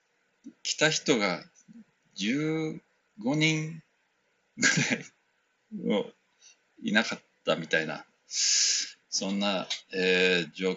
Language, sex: Japanese, male